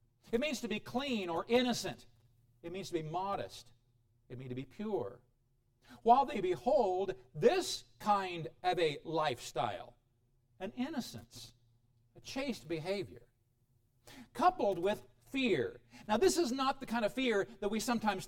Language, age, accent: English, 50-69, American